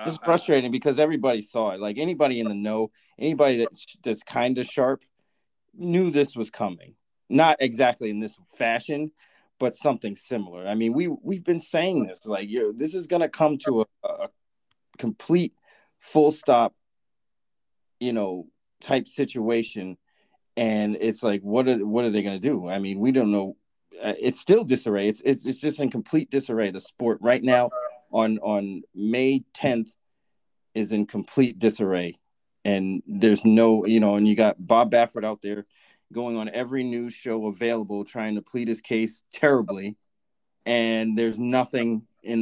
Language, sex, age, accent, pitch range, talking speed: English, male, 30-49, American, 105-130 Hz, 170 wpm